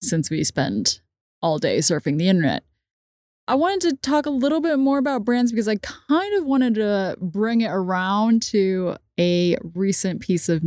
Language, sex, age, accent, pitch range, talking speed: English, female, 20-39, American, 170-215 Hz, 180 wpm